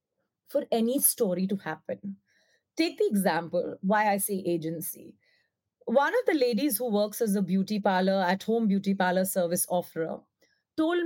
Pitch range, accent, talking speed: 205-290 Hz, Indian, 150 wpm